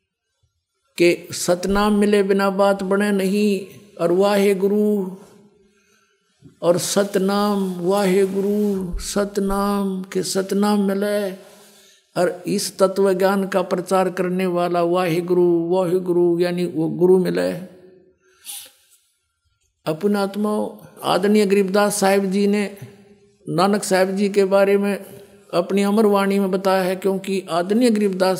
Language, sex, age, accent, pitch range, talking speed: Hindi, male, 50-69, native, 180-200 Hz, 110 wpm